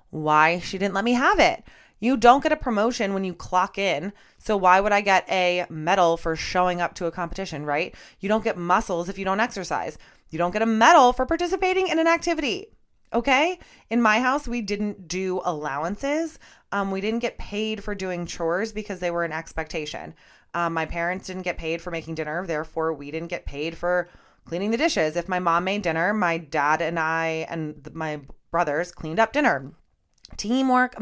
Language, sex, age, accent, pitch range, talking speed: English, female, 20-39, American, 165-205 Hz, 200 wpm